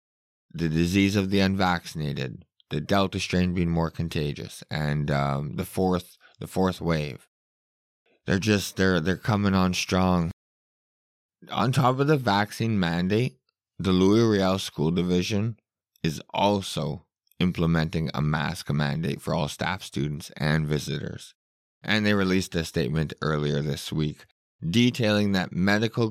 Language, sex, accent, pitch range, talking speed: English, male, American, 85-105 Hz, 135 wpm